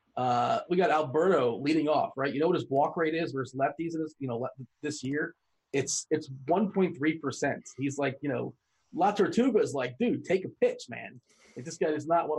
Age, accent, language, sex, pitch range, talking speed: 30-49, American, English, male, 125-160 Hz, 215 wpm